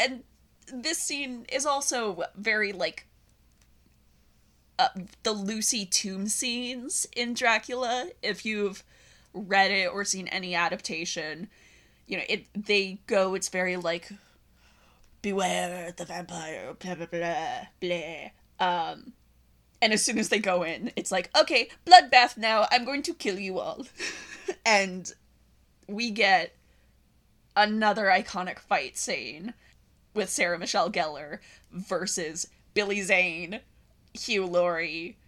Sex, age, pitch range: female, 20-39, 180-225 Hz